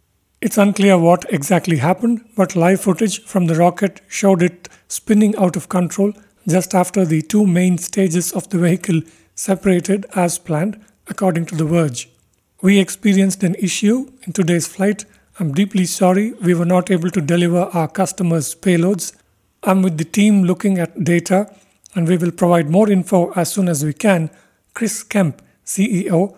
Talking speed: 165 wpm